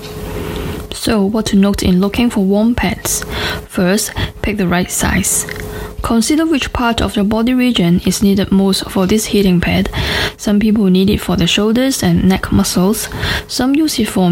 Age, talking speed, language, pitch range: 10-29, 175 wpm, English, 180-220 Hz